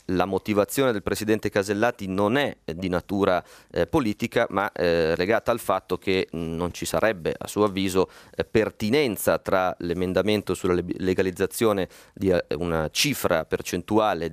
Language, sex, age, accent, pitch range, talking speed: Italian, male, 30-49, native, 90-105 Hz, 140 wpm